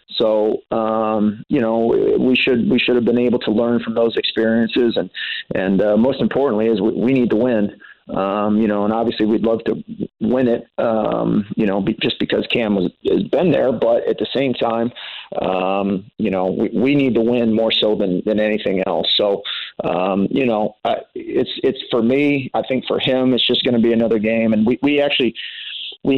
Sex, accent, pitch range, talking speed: male, American, 110-125 Hz, 210 wpm